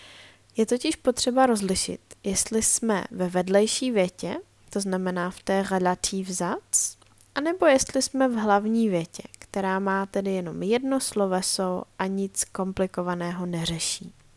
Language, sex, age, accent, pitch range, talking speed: Czech, female, 20-39, native, 175-215 Hz, 125 wpm